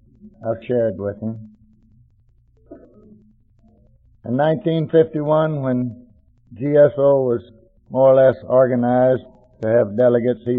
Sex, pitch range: male, 110-130 Hz